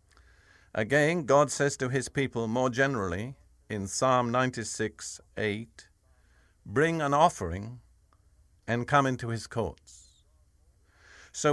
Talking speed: 105 wpm